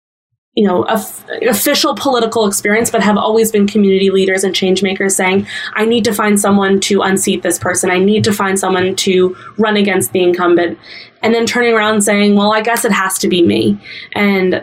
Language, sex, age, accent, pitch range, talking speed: English, female, 20-39, American, 180-210 Hz, 205 wpm